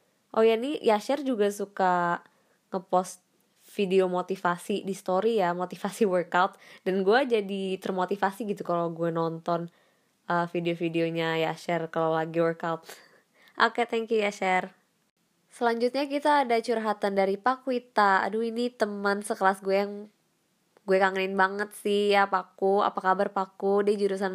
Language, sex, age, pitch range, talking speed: Indonesian, female, 20-39, 185-215 Hz, 150 wpm